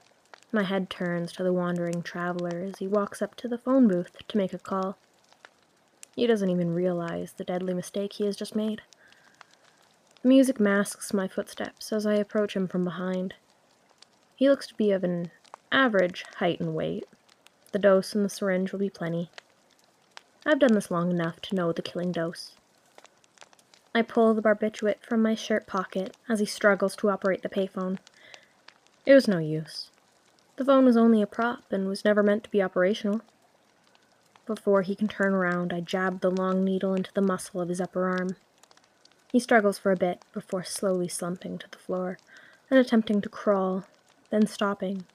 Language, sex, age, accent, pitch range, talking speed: English, female, 10-29, American, 180-215 Hz, 180 wpm